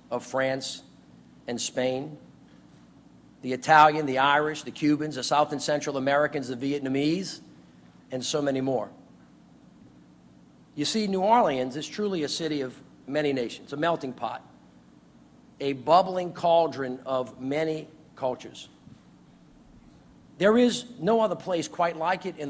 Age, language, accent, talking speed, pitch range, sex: 50-69, English, American, 135 wpm, 125-160 Hz, male